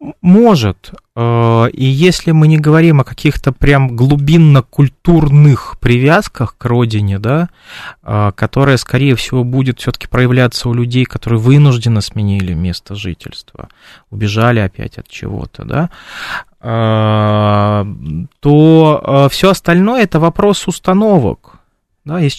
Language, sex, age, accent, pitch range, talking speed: Russian, male, 20-39, native, 110-150 Hz, 110 wpm